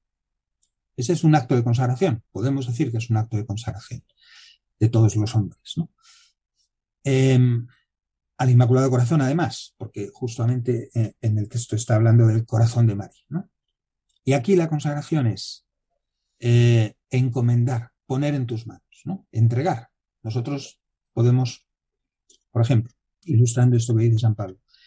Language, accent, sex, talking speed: Spanish, Spanish, male, 145 wpm